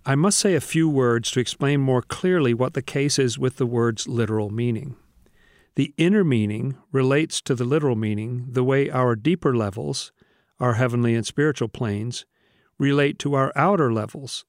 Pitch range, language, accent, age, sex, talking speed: 120-150 Hz, English, American, 50-69, male, 175 wpm